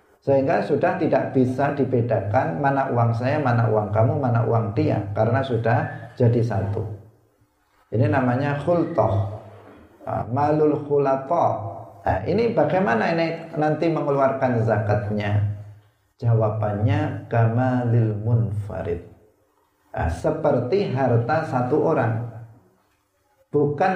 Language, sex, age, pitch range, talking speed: Indonesian, male, 50-69, 110-150 Hz, 95 wpm